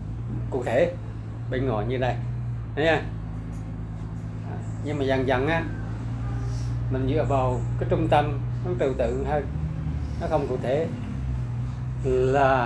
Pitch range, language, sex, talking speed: 120-180 Hz, Vietnamese, male, 130 wpm